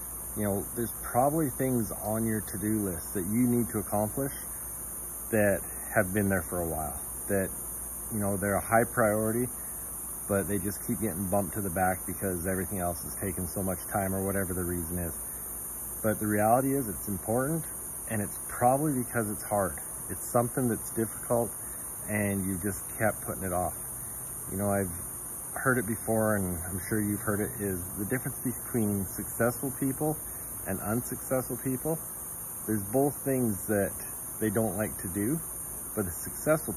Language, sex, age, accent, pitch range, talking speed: English, male, 40-59, American, 95-120 Hz, 175 wpm